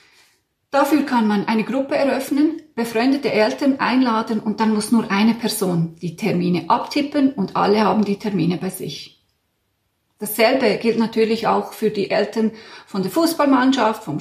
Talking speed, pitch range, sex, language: 150 wpm, 195-260 Hz, female, German